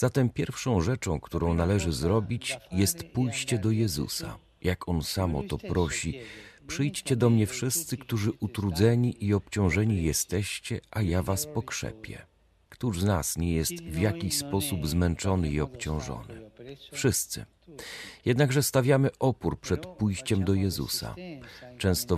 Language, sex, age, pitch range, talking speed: Polish, male, 40-59, 85-120 Hz, 135 wpm